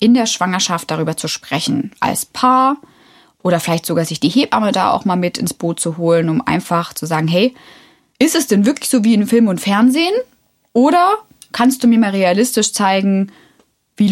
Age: 20-39